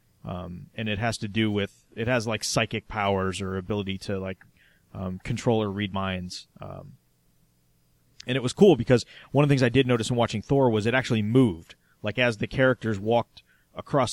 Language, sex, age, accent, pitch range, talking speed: English, male, 30-49, American, 95-120 Hz, 200 wpm